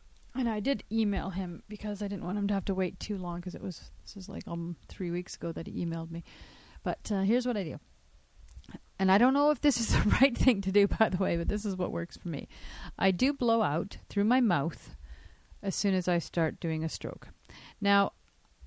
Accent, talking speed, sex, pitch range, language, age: American, 240 wpm, female, 165-220 Hz, English, 40-59